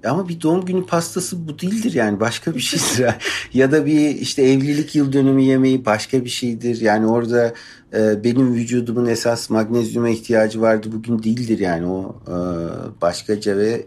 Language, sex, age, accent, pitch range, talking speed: Turkish, male, 50-69, native, 105-125 Hz, 165 wpm